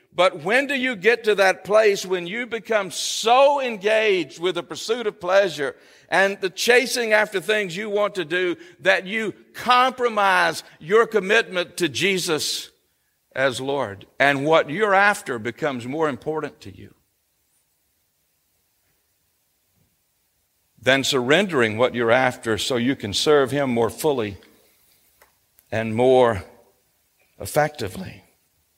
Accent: American